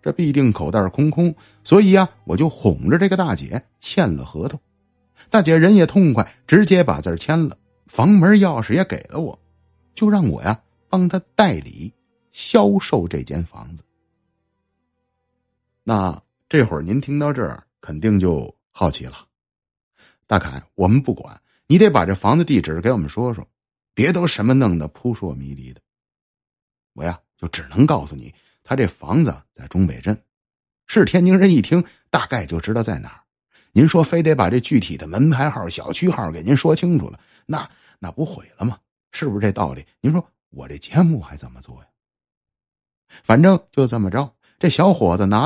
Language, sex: Chinese, male